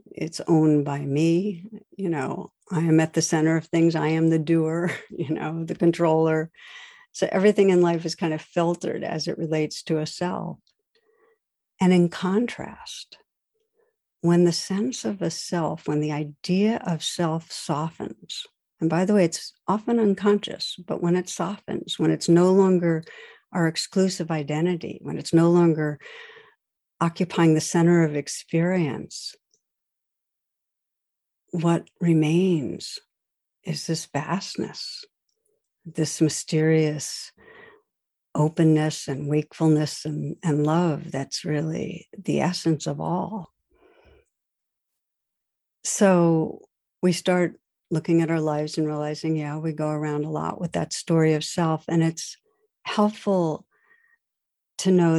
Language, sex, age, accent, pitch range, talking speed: English, female, 60-79, American, 155-185 Hz, 130 wpm